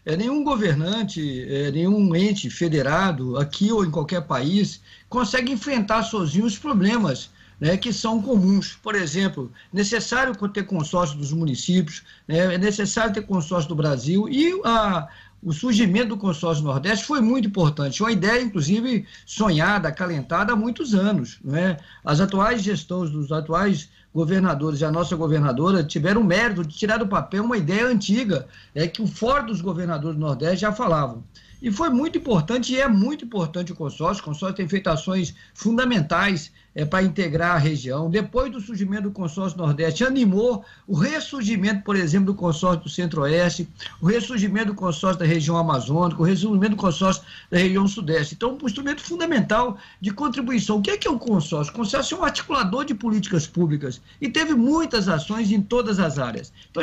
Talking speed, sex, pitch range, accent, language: 170 wpm, male, 165-225 Hz, Brazilian, Portuguese